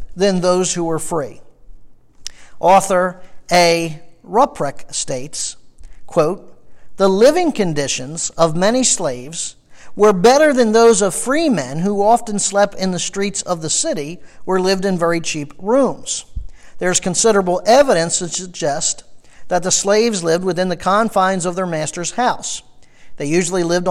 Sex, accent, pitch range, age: male, American, 165-205 Hz, 50-69